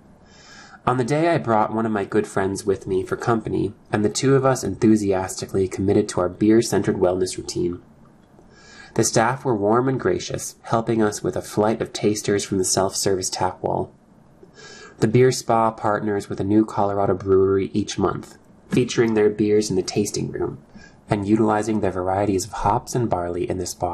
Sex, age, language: male, 20-39, English